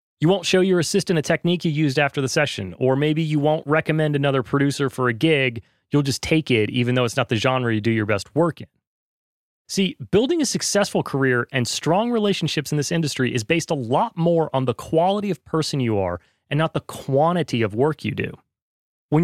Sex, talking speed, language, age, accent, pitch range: male, 220 wpm, English, 30-49, American, 130-190 Hz